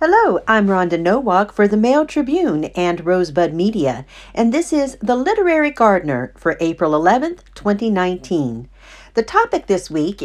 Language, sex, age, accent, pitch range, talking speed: English, female, 50-69, American, 150-220 Hz, 145 wpm